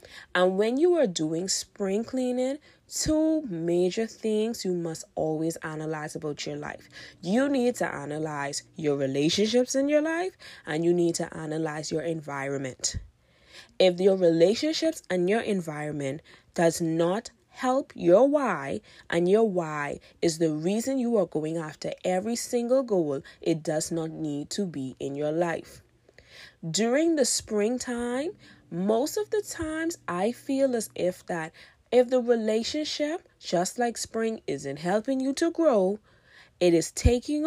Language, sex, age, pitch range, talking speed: English, female, 20-39, 155-235 Hz, 145 wpm